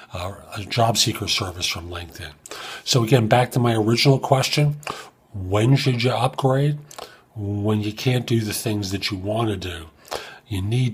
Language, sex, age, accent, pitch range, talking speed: English, male, 40-59, American, 110-175 Hz, 170 wpm